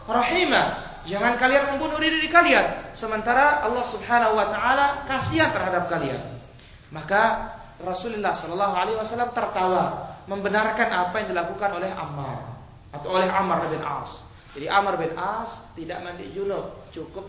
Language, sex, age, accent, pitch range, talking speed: Indonesian, male, 20-39, native, 140-220 Hz, 130 wpm